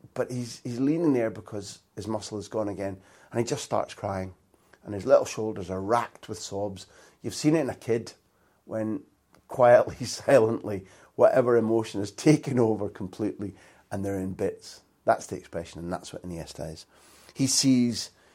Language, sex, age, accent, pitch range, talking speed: English, male, 30-49, British, 100-130 Hz, 175 wpm